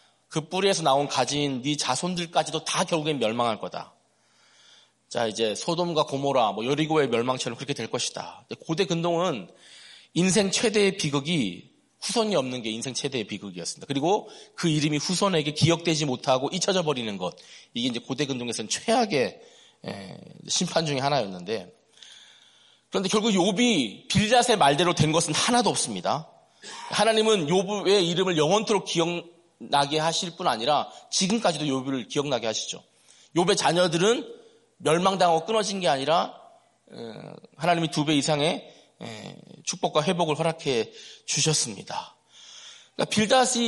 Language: Korean